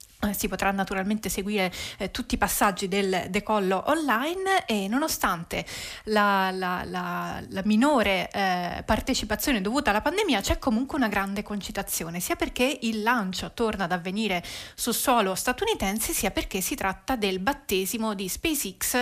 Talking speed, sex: 140 wpm, female